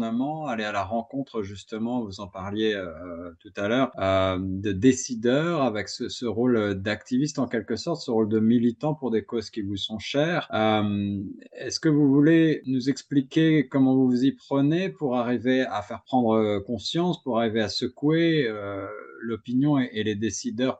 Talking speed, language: 180 wpm, French